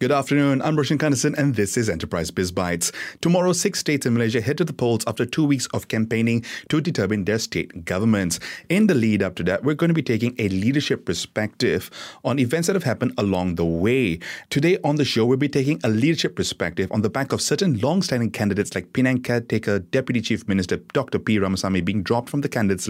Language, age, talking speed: English, 30-49, 220 wpm